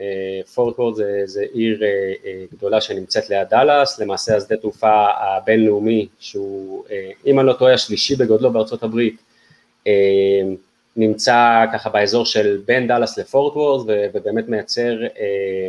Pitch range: 105-125 Hz